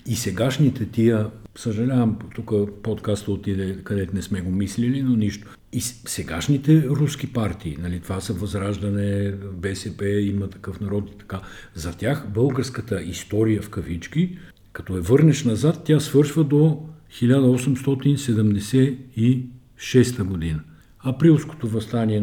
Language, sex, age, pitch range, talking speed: Bulgarian, male, 50-69, 105-130 Hz, 120 wpm